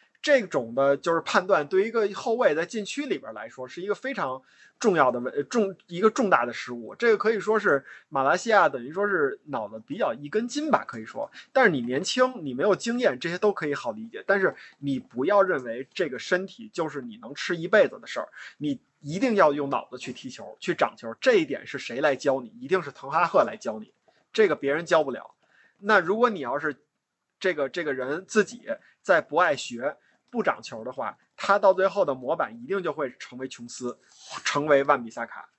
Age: 20-39